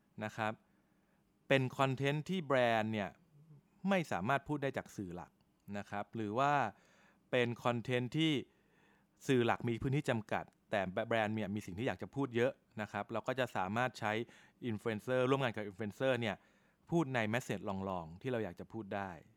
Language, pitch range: Thai, 105-135 Hz